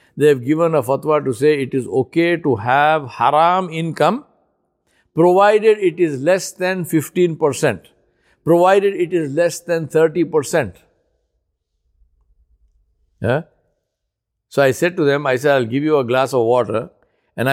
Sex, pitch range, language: male, 130-170 Hz, English